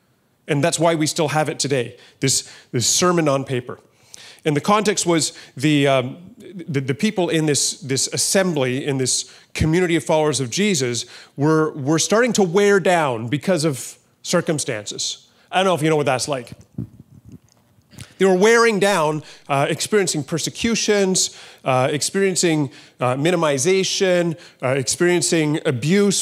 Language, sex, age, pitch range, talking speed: English, male, 30-49, 135-180 Hz, 150 wpm